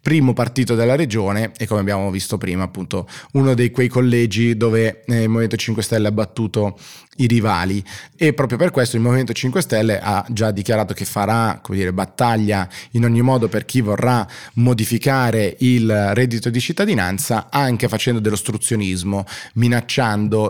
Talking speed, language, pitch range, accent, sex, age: 160 wpm, Italian, 105-125 Hz, native, male, 30-49